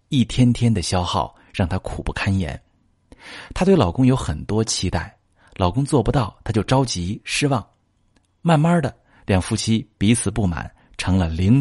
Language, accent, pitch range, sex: Chinese, native, 90-120 Hz, male